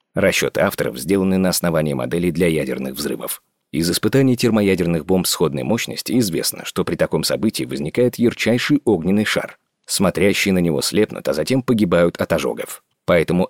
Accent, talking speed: native, 150 wpm